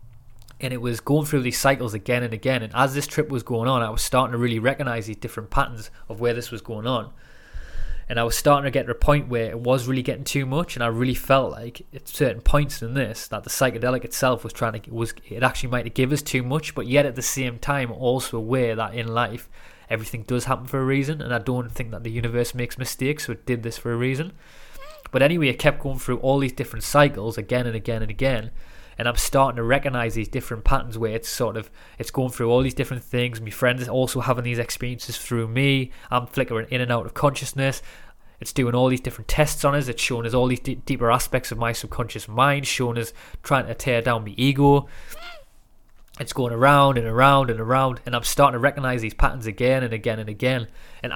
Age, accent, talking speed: 20-39, British, 240 wpm